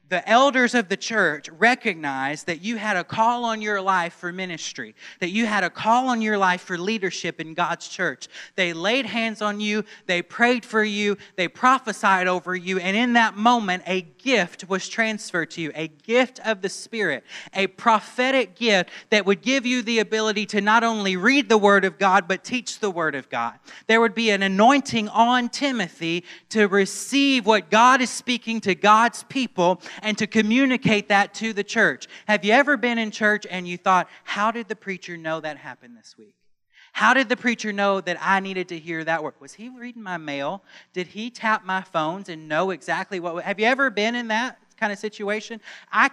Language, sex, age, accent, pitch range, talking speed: English, male, 30-49, American, 185-230 Hz, 205 wpm